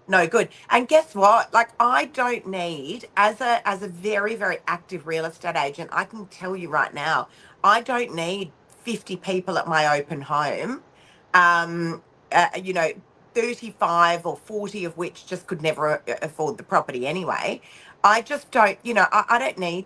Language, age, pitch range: English, 40-59, 165-210 Hz